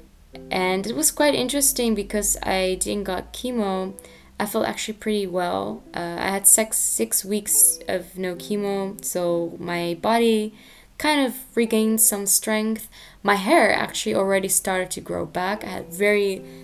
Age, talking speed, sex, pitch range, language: 10-29, 155 wpm, female, 180-220 Hz, English